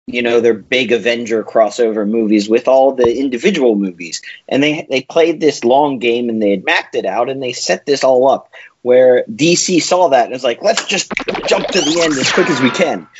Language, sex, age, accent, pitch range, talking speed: English, male, 30-49, American, 115-160 Hz, 225 wpm